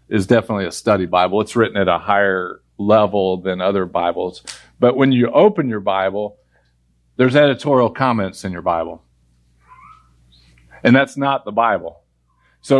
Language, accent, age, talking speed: English, American, 50-69, 150 wpm